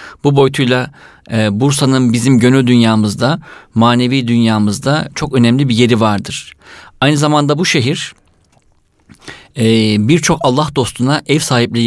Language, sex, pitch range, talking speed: Turkish, male, 120-145 Hz, 110 wpm